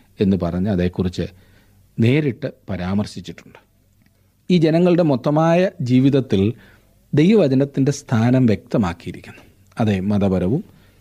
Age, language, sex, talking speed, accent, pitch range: 40-59, Malayalam, male, 75 wpm, native, 100-135 Hz